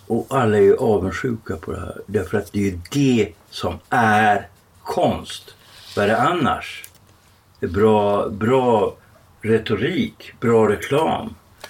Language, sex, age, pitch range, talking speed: Swedish, male, 60-79, 100-130 Hz, 135 wpm